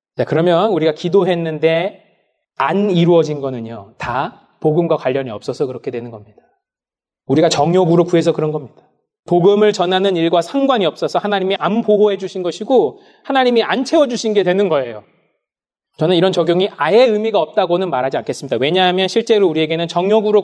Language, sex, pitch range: Korean, male, 170-220 Hz